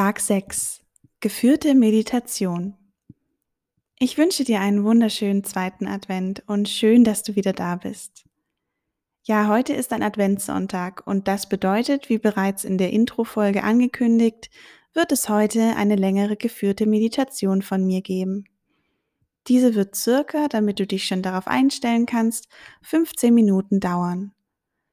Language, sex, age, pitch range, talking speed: German, female, 20-39, 195-235 Hz, 130 wpm